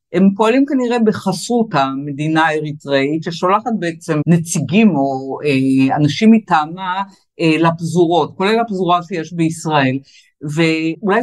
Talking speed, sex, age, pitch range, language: 105 wpm, female, 50-69, 145-185 Hz, Hebrew